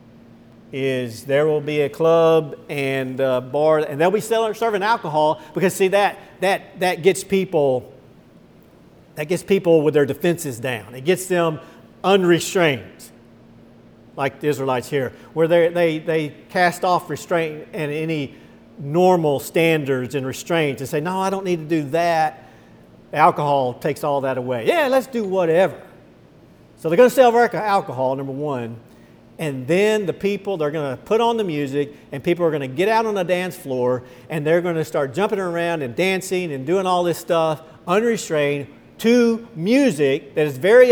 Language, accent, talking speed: English, American, 175 wpm